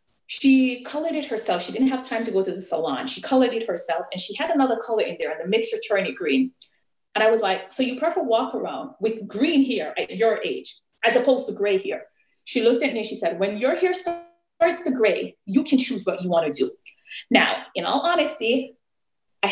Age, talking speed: 30-49, 235 wpm